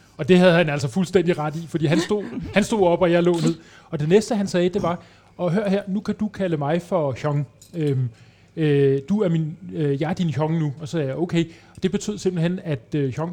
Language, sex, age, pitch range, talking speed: Danish, male, 30-49, 150-190 Hz, 250 wpm